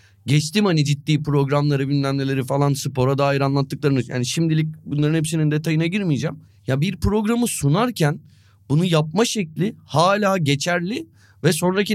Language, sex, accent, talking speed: Turkish, male, native, 135 wpm